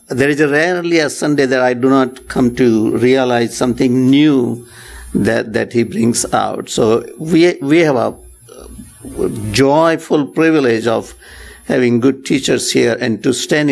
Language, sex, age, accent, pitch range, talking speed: English, male, 60-79, Indian, 130-170 Hz, 155 wpm